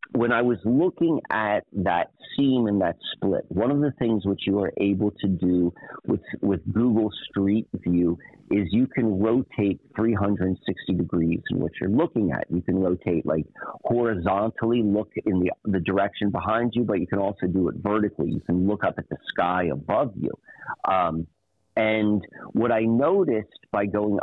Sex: male